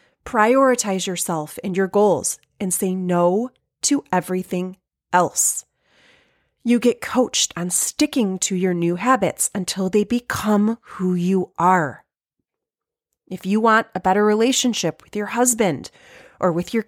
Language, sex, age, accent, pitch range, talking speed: English, female, 30-49, American, 185-235 Hz, 135 wpm